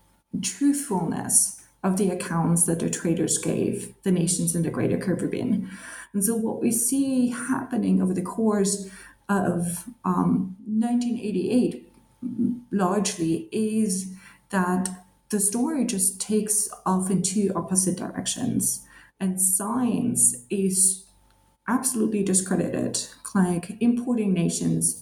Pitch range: 185-225 Hz